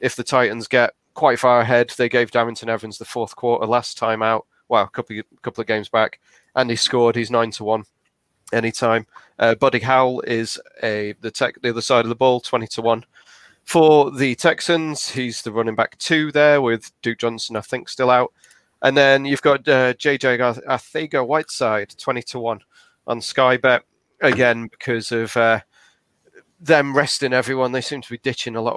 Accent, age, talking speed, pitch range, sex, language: British, 30-49, 195 wpm, 115-135 Hz, male, English